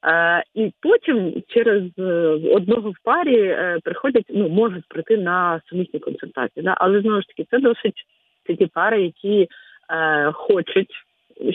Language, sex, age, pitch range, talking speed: Ukrainian, female, 30-49, 165-215 Hz, 130 wpm